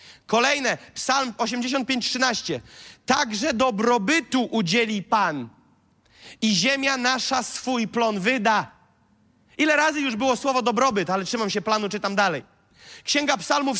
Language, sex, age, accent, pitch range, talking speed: Polish, male, 40-59, native, 210-265 Hz, 120 wpm